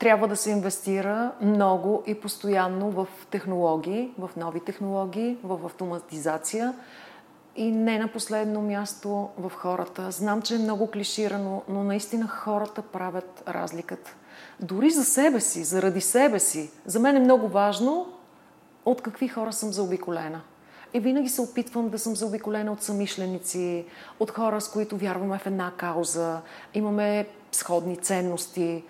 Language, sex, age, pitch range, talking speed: Bulgarian, female, 40-59, 180-225 Hz, 140 wpm